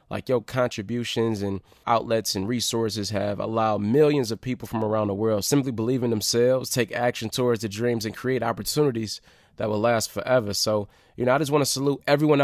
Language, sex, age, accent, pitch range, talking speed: English, male, 20-39, American, 105-125 Hz, 200 wpm